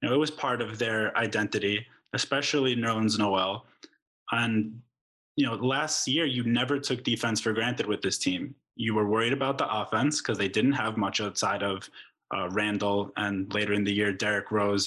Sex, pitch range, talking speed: male, 105-125 Hz, 180 wpm